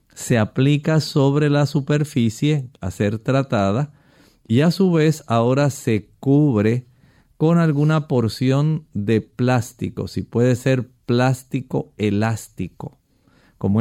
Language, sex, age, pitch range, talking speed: Spanish, male, 50-69, 115-145 Hz, 115 wpm